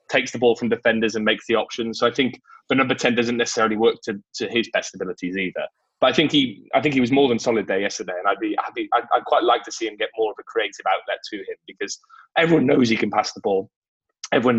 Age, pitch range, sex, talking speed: 20-39, 115-165 Hz, male, 270 wpm